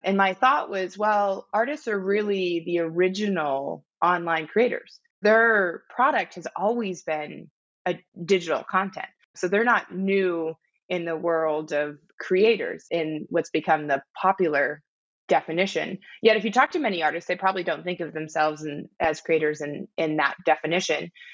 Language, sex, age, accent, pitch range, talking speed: English, female, 20-39, American, 165-205 Hz, 150 wpm